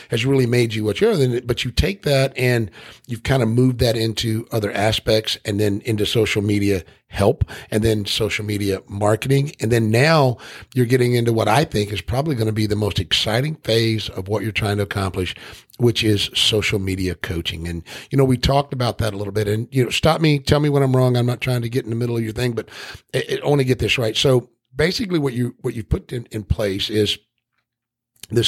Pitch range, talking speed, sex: 105-125 Hz, 230 wpm, male